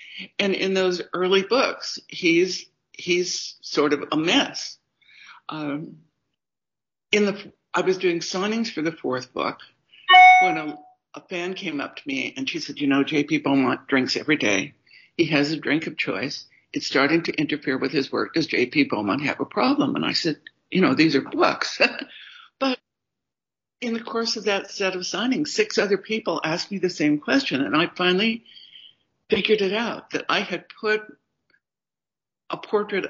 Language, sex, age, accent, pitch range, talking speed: English, female, 70-89, American, 160-230 Hz, 175 wpm